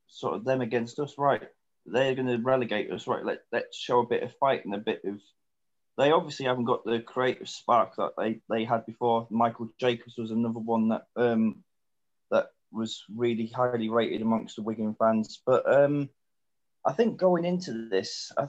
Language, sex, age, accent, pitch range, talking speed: English, male, 20-39, British, 110-130 Hz, 190 wpm